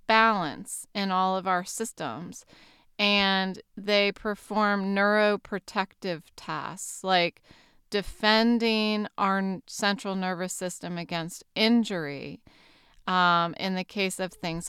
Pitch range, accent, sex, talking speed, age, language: 185-215 Hz, American, female, 100 wpm, 30-49, English